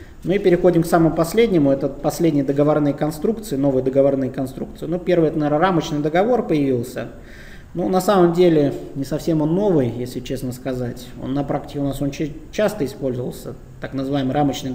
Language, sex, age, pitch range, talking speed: Russian, male, 20-39, 135-165 Hz, 175 wpm